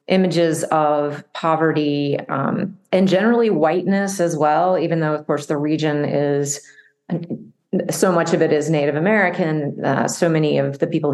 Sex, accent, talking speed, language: female, American, 155 wpm, English